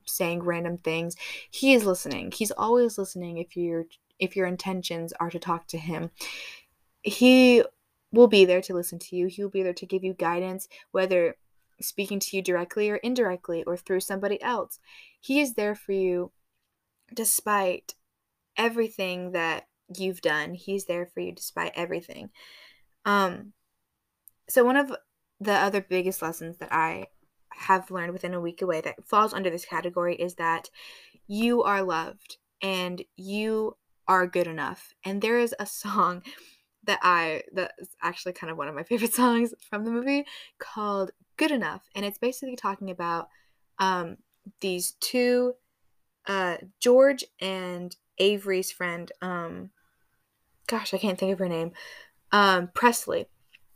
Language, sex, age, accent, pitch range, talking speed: English, female, 10-29, American, 175-210 Hz, 155 wpm